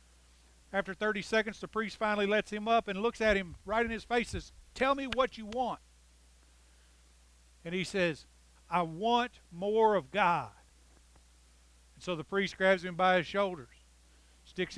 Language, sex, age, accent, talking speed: English, male, 50-69, American, 170 wpm